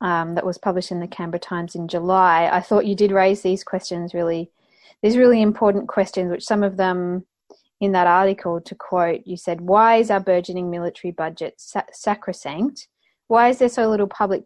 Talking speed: 190 wpm